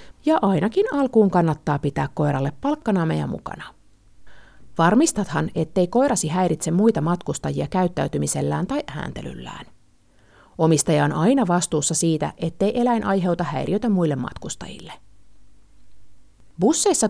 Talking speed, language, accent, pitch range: 105 wpm, Finnish, native, 155-235 Hz